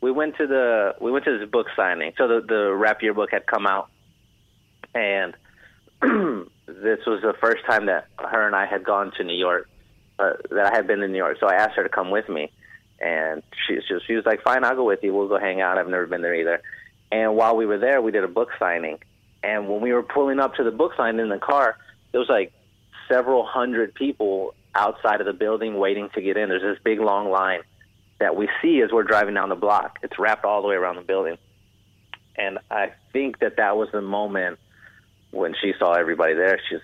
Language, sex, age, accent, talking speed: English, male, 30-49, American, 235 wpm